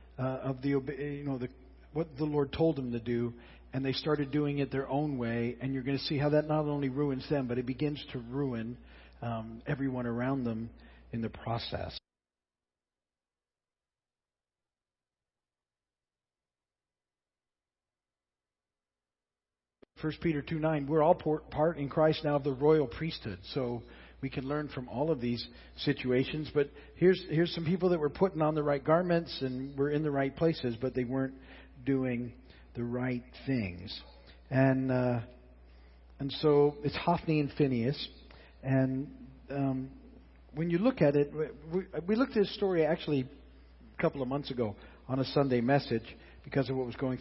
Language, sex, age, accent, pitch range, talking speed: English, male, 50-69, American, 105-145 Hz, 165 wpm